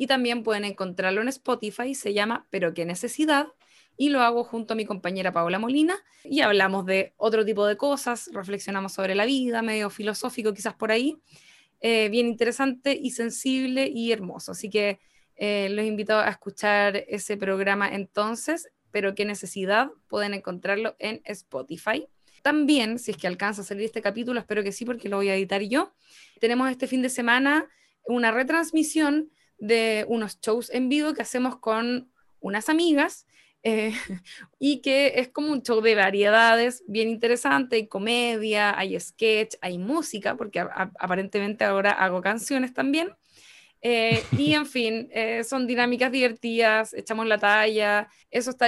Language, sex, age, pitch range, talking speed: Spanish, female, 20-39, 205-255 Hz, 165 wpm